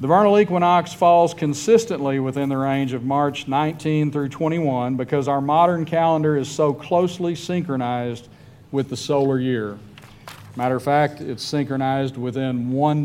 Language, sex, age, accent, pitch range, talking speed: English, male, 40-59, American, 125-155 Hz, 150 wpm